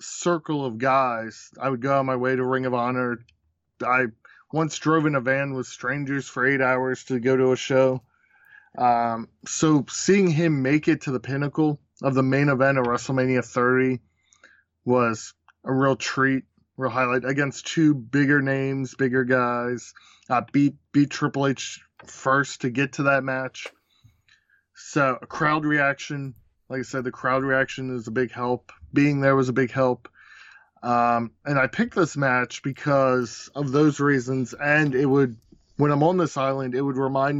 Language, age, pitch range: English, 20-39, 125-140 Hz